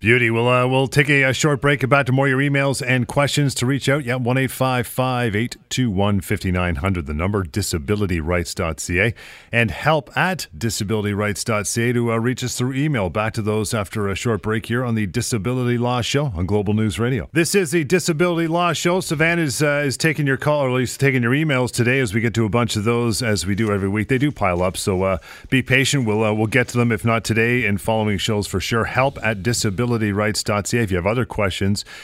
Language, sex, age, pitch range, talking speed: English, male, 40-59, 100-130 Hz, 220 wpm